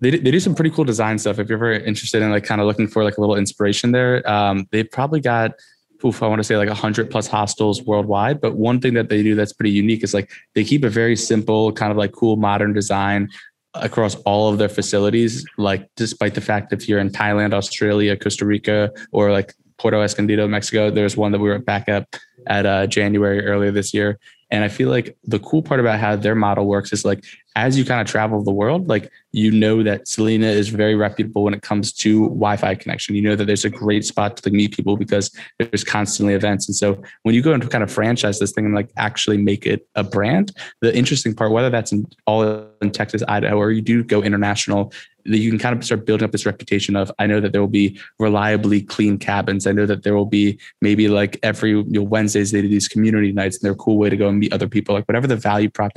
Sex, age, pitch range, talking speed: male, 20-39, 100-110 Hz, 240 wpm